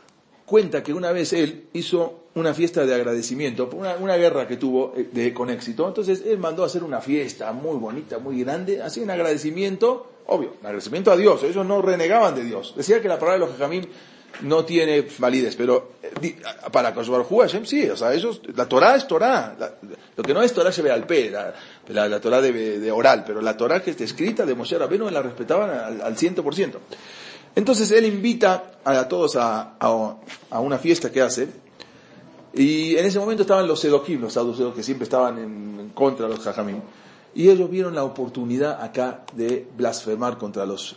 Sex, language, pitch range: male, English, 115-180 Hz